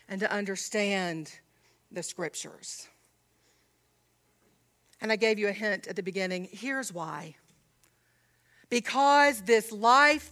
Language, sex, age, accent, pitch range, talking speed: English, female, 50-69, American, 200-295 Hz, 110 wpm